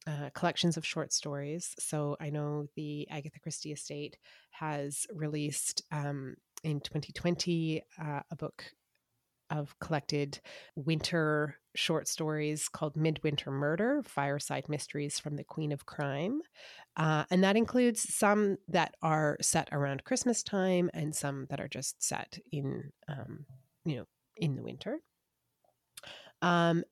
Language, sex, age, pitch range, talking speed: English, female, 30-49, 145-175 Hz, 135 wpm